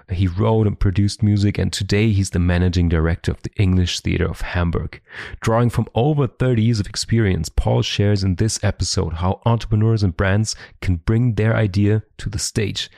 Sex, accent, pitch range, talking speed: male, German, 95-115 Hz, 185 wpm